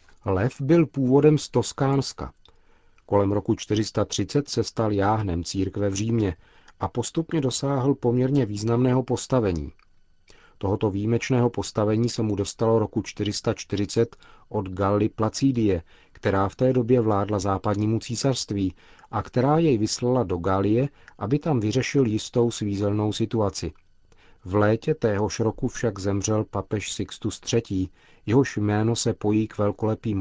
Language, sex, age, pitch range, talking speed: Czech, male, 40-59, 100-120 Hz, 130 wpm